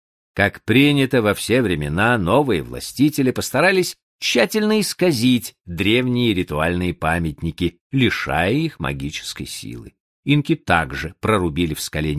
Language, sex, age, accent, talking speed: Russian, male, 50-69, native, 110 wpm